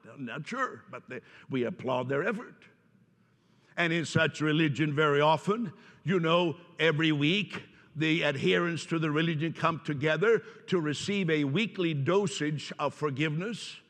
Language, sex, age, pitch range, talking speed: English, male, 60-79, 150-185 Hz, 140 wpm